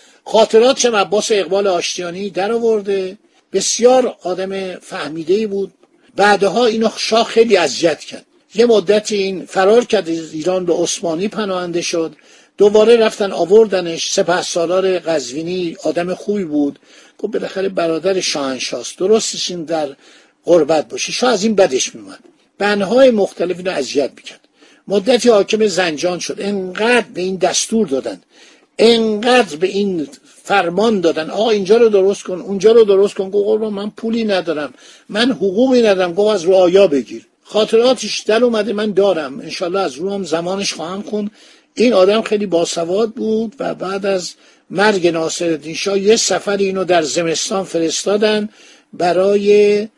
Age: 50-69